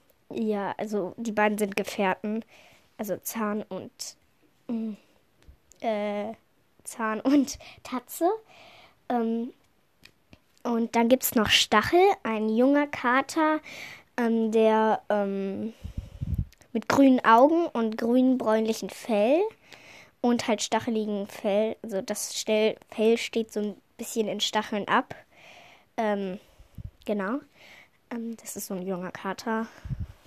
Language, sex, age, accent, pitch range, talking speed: German, female, 10-29, German, 215-250 Hz, 110 wpm